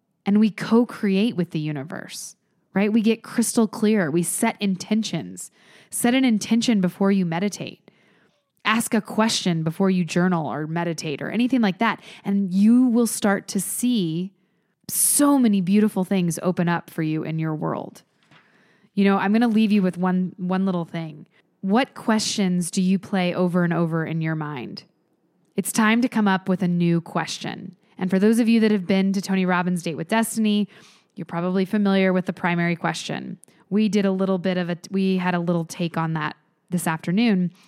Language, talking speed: English, 190 wpm